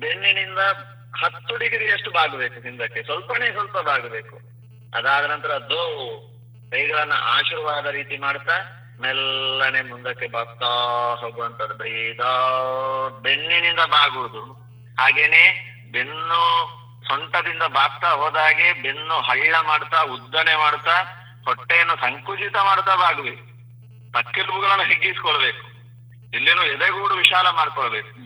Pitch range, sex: 120-170 Hz, male